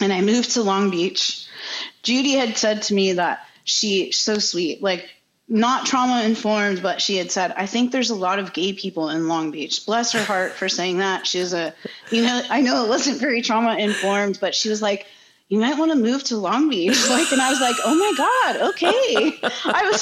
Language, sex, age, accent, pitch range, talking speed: English, female, 30-49, American, 195-290 Hz, 220 wpm